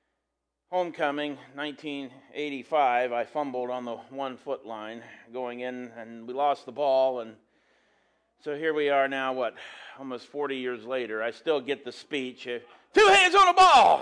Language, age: English, 40-59